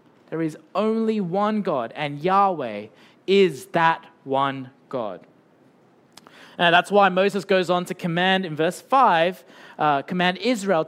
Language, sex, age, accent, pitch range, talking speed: English, male, 20-39, Australian, 175-235 Hz, 140 wpm